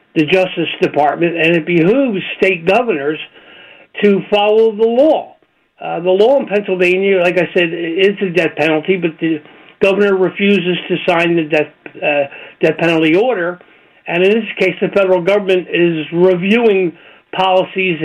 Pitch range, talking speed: 160-200 Hz, 155 wpm